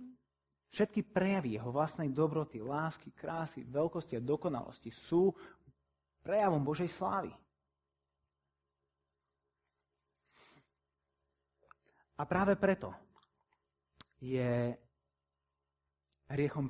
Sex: male